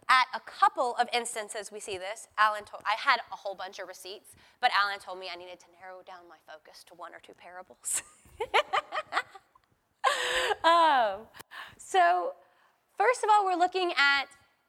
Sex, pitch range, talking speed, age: female, 230-330 Hz, 170 wpm, 20-39